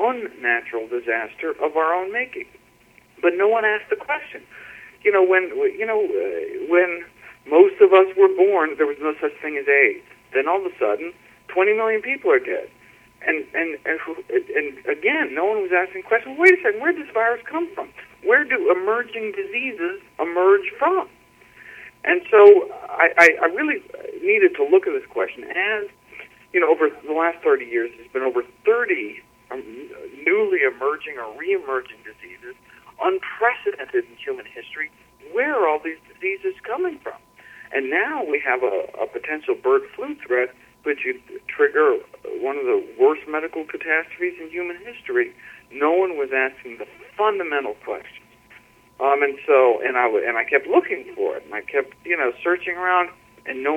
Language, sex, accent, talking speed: English, male, American, 175 wpm